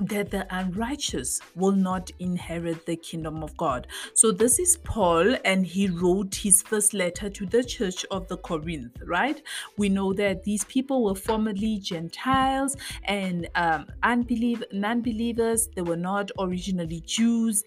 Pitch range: 175-215 Hz